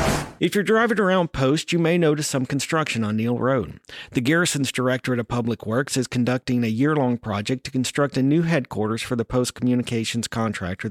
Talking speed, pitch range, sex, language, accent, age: 185 wpm, 110-145 Hz, male, English, American, 50-69